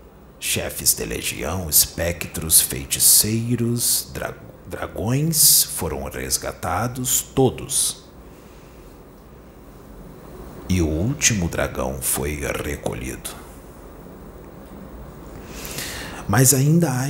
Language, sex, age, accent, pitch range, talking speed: Portuguese, male, 50-69, Brazilian, 85-135 Hz, 65 wpm